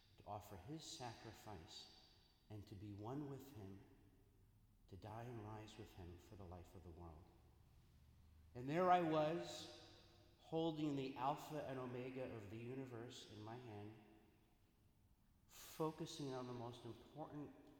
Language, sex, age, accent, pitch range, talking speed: English, male, 40-59, American, 95-125 Hz, 140 wpm